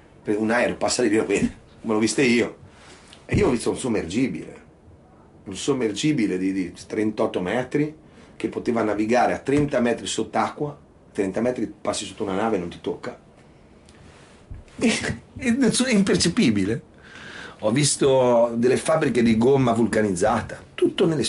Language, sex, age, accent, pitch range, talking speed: Italian, male, 40-59, native, 115-155 Hz, 140 wpm